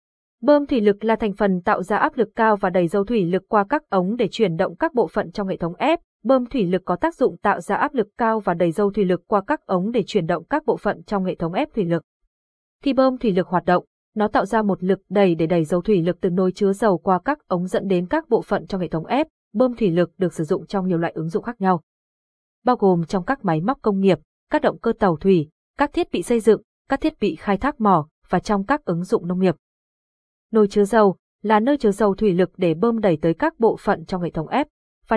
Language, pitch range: Vietnamese, 175-225 Hz